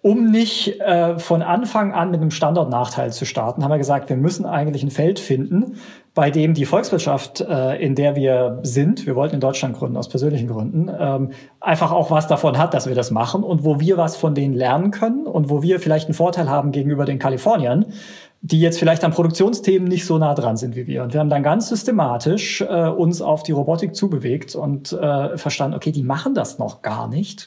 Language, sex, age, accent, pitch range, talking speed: German, male, 40-59, German, 135-170 Hz, 215 wpm